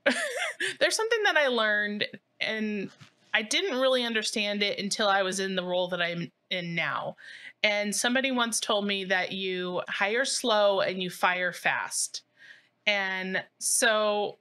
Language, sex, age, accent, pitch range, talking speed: English, female, 20-39, American, 195-245 Hz, 150 wpm